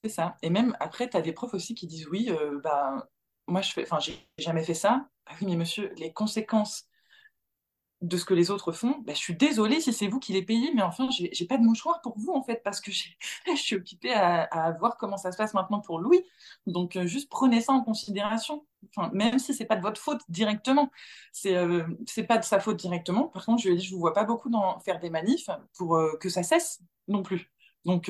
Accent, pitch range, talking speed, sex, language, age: French, 175-265 Hz, 255 wpm, female, French, 20-39